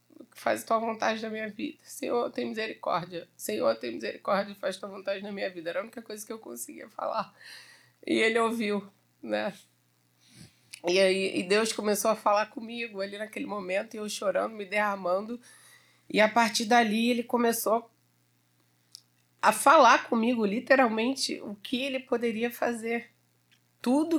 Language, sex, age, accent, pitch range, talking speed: Portuguese, female, 30-49, Brazilian, 165-220 Hz, 160 wpm